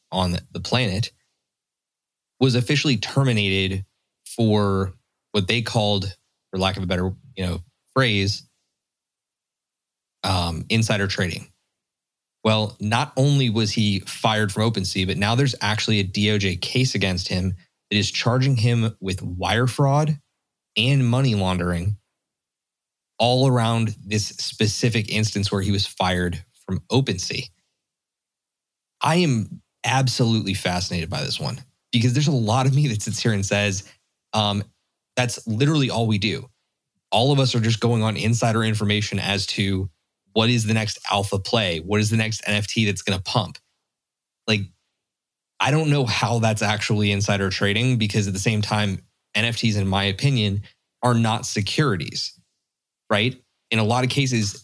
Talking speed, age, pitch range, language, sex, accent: 150 wpm, 20-39, 100-120 Hz, English, male, American